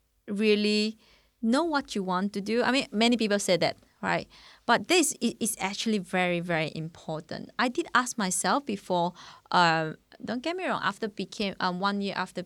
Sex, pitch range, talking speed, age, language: female, 180-240 Hz, 190 wpm, 20-39, English